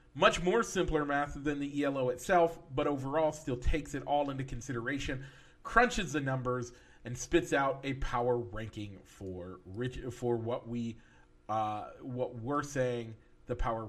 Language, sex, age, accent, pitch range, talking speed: English, male, 40-59, American, 120-165 Hz, 155 wpm